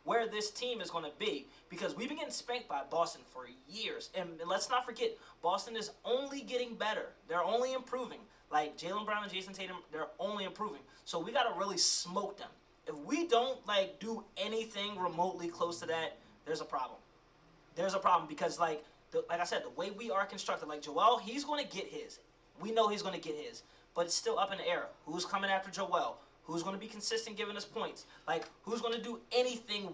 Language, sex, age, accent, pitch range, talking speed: English, male, 20-39, American, 165-225 Hz, 225 wpm